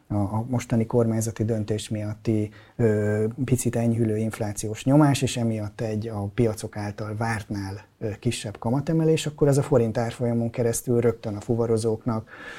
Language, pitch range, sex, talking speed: Hungarian, 105-120 Hz, male, 125 wpm